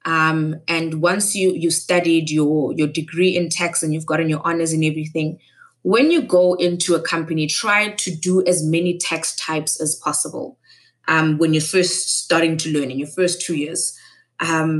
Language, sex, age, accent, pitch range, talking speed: English, female, 20-39, South African, 160-185 Hz, 185 wpm